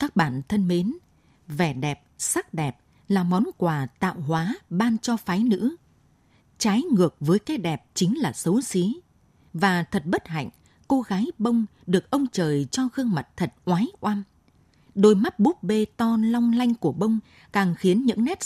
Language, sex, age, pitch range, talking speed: Vietnamese, female, 20-39, 165-225 Hz, 180 wpm